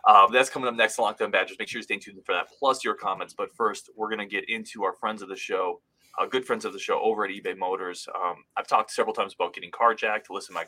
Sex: male